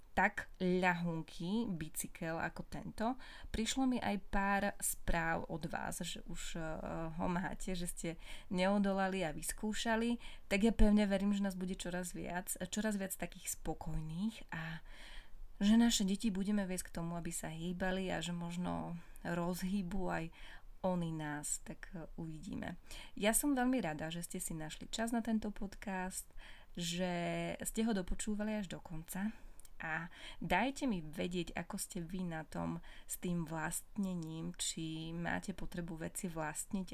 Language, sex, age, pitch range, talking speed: Slovak, female, 20-39, 170-205 Hz, 145 wpm